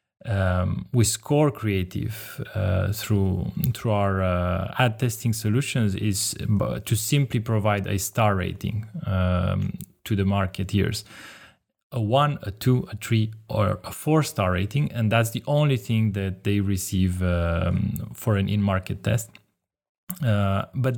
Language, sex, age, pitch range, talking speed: English, male, 20-39, 100-130 Hz, 140 wpm